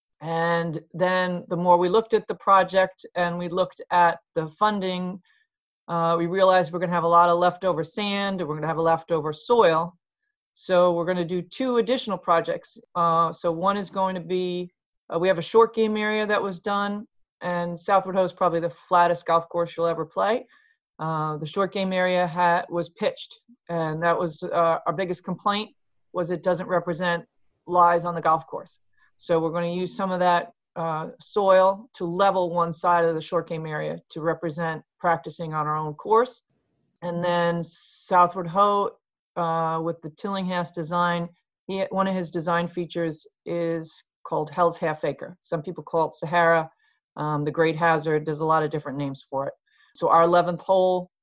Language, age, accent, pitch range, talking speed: English, 30-49, American, 165-185 Hz, 190 wpm